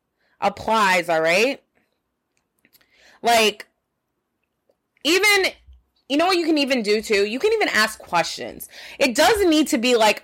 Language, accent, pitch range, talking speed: English, American, 190-265 Hz, 140 wpm